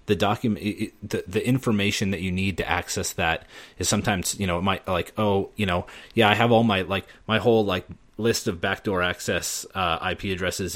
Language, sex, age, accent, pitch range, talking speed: English, male, 30-49, American, 85-105 Hz, 205 wpm